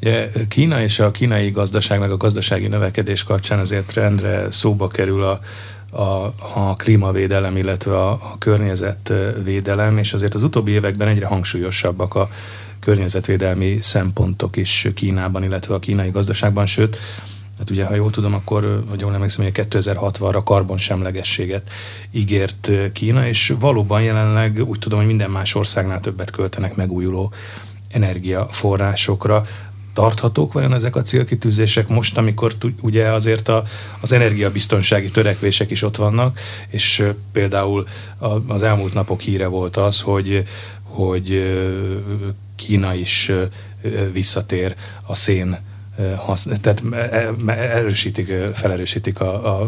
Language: Hungarian